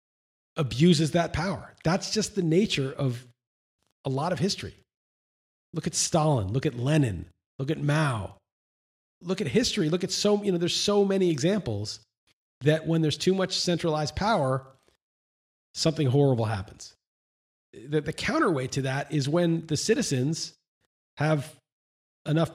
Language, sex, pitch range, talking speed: English, male, 125-165 Hz, 145 wpm